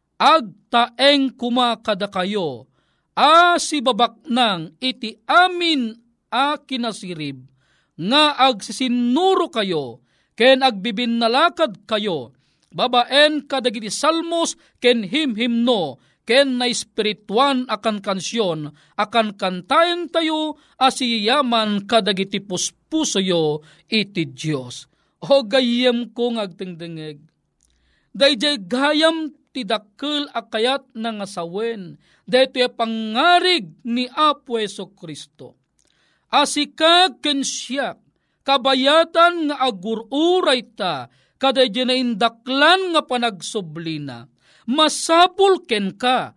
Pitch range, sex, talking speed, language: 205-290 Hz, male, 80 wpm, Filipino